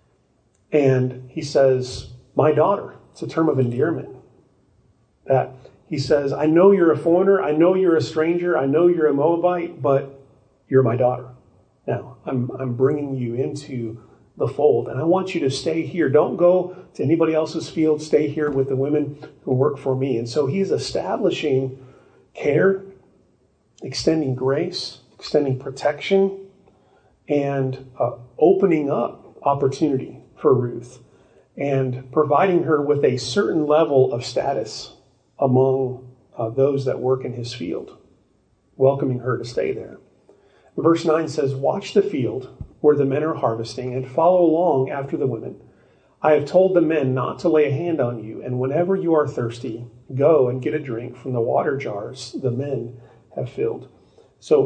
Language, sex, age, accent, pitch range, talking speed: English, male, 40-59, American, 130-160 Hz, 160 wpm